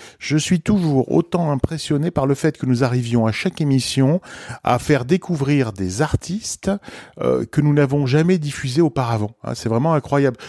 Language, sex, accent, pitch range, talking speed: French, male, French, 120-165 Hz, 170 wpm